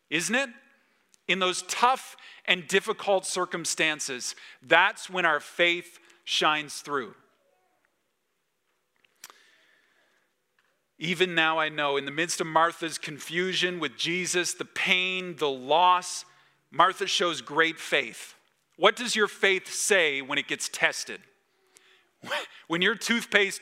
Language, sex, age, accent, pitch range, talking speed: English, male, 40-59, American, 150-190 Hz, 115 wpm